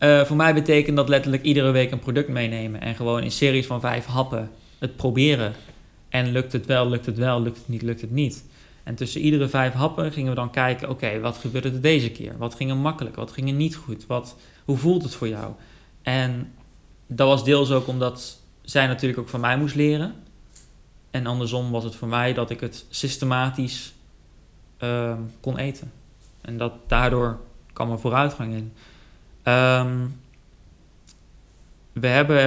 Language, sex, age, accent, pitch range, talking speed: Dutch, male, 20-39, Dutch, 115-140 Hz, 185 wpm